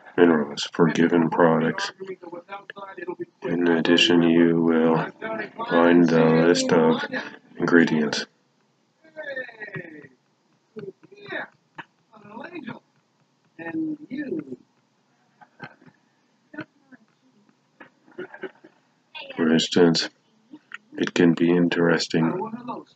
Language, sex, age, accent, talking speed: English, male, 50-69, American, 50 wpm